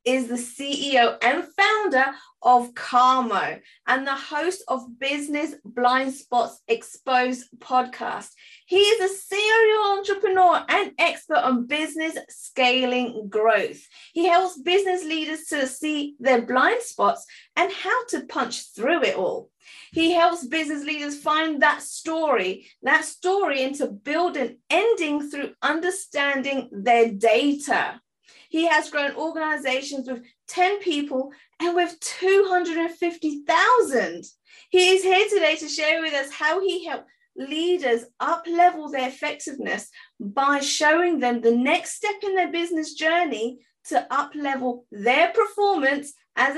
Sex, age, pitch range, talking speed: female, 30-49, 260-355 Hz, 130 wpm